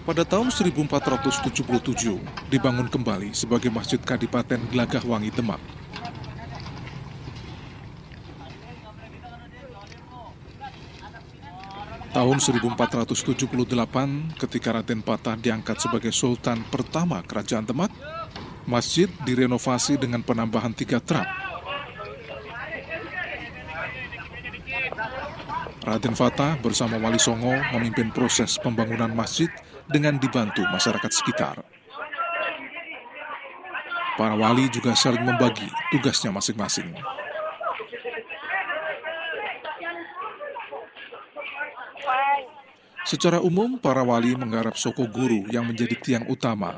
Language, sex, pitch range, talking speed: Indonesian, male, 120-150 Hz, 75 wpm